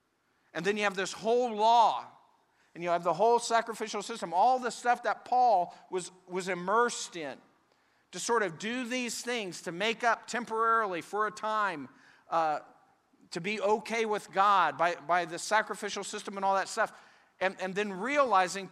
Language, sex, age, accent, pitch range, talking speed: English, male, 50-69, American, 200-240 Hz, 175 wpm